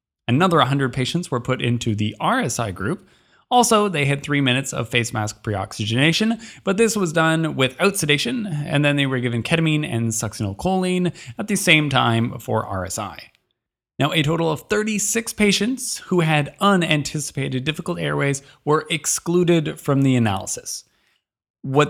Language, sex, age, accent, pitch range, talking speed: English, male, 20-39, American, 120-180 Hz, 150 wpm